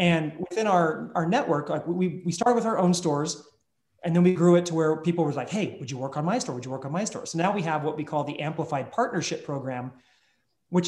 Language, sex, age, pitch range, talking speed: English, male, 30-49, 150-180 Hz, 265 wpm